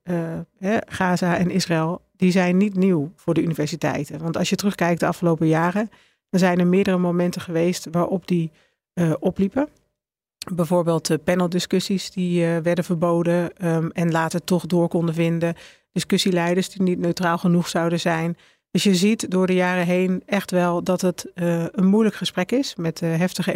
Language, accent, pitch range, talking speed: Dutch, Dutch, 170-185 Hz, 170 wpm